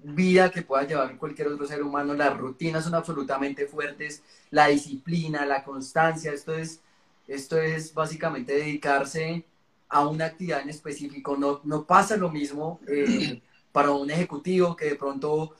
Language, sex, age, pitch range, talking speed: Spanish, male, 30-49, 140-165 Hz, 150 wpm